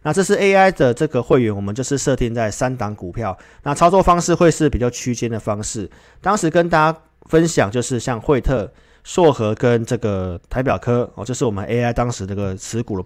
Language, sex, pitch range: Chinese, male, 105-145 Hz